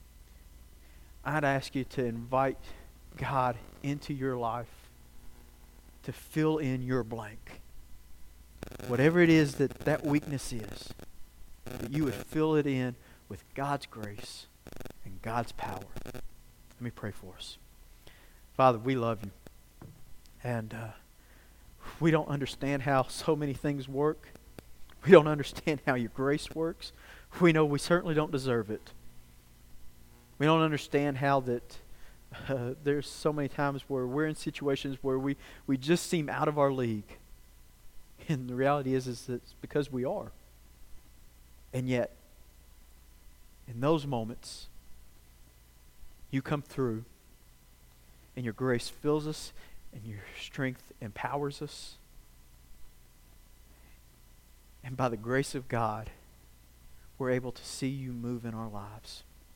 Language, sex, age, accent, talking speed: English, male, 40-59, American, 135 wpm